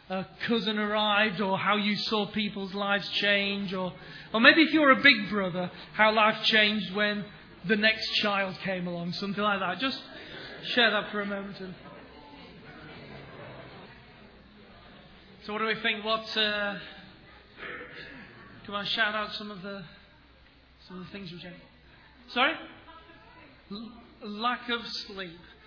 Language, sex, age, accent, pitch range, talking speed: English, male, 30-49, British, 185-220 Hz, 145 wpm